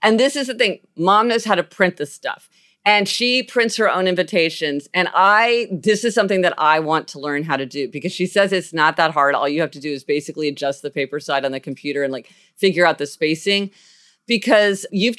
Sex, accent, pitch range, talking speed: female, American, 155-200 Hz, 235 wpm